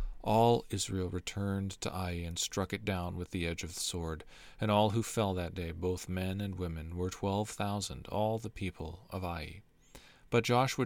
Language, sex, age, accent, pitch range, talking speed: English, male, 40-59, American, 90-110 Hz, 195 wpm